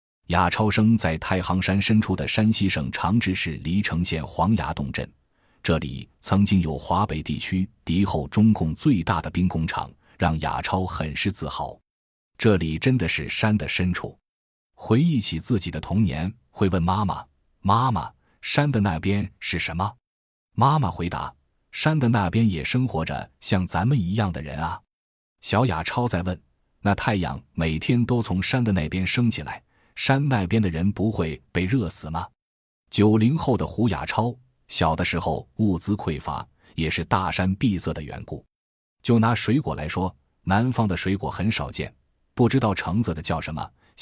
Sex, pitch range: male, 80-110 Hz